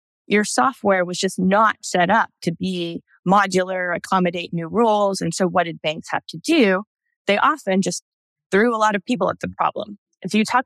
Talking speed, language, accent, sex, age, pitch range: 195 wpm, English, American, female, 20-39, 180-225 Hz